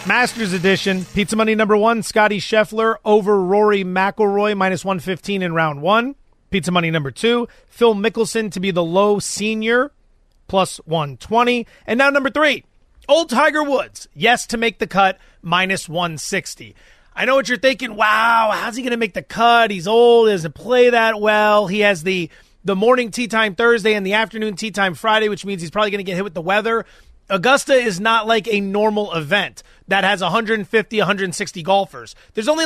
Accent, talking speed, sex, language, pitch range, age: American, 185 wpm, male, English, 190-230 Hz, 30-49